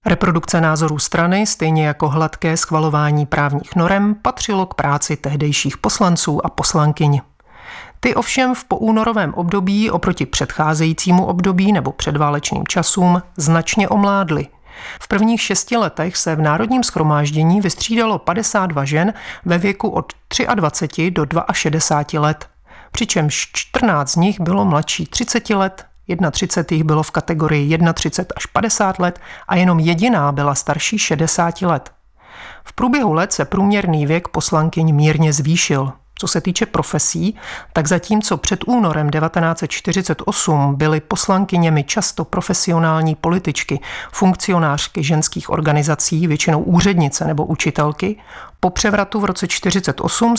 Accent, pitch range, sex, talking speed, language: native, 155-195 Hz, male, 125 wpm, Czech